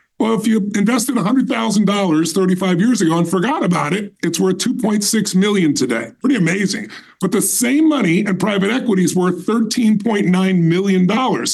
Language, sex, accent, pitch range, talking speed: English, female, American, 185-245 Hz, 150 wpm